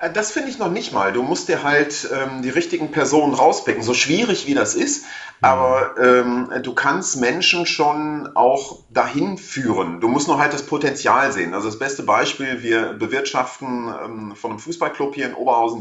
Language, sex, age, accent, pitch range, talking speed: German, male, 40-59, German, 115-165 Hz, 185 wpm